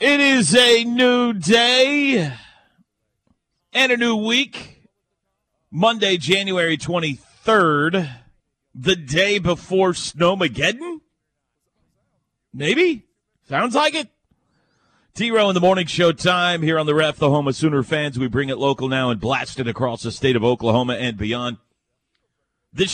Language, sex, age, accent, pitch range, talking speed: English, male, 40-59, American, 125-175 Hz, 135 wpm